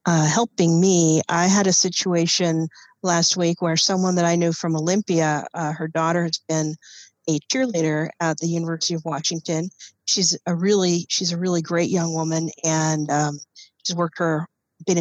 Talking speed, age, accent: 170 wpm, 40-59, American